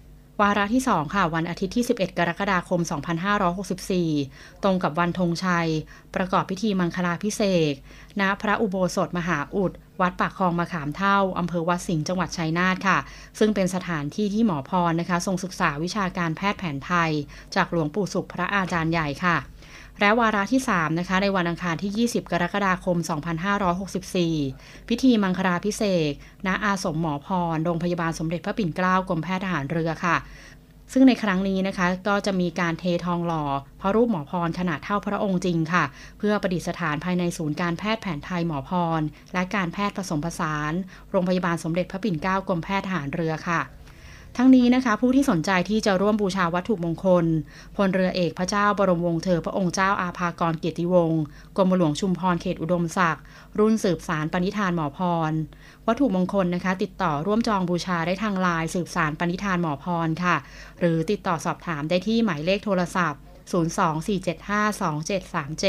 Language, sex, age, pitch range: Thai, female, 20-39, 165-195 Hz